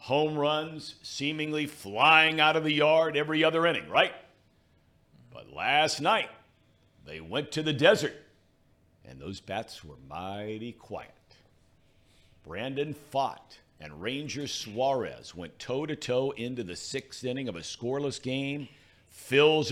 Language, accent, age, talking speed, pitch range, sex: English, American, 50-69, 130 wpm, 110-155 Hz, male